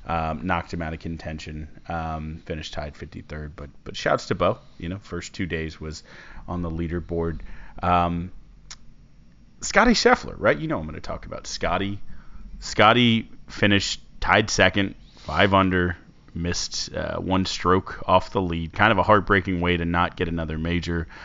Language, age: English, 30-49